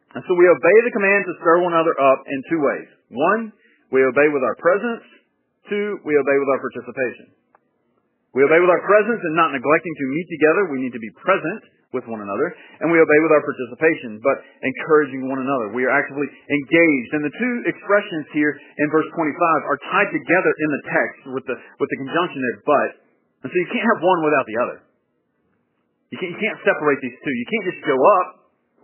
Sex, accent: male, American